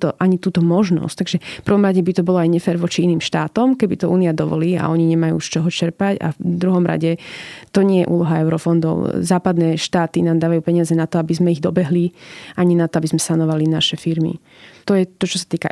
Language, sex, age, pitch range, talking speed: Slovak, female, 20-39, 165-185 Hz, 230 wpm